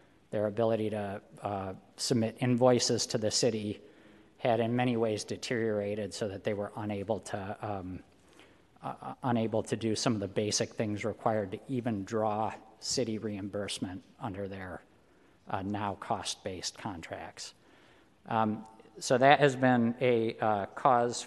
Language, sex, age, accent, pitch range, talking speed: English, male, 50-69, American, 105-120 Hz, 140 wpm